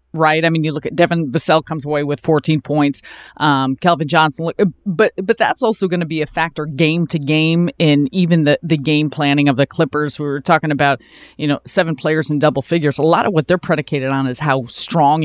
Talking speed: 230 wpm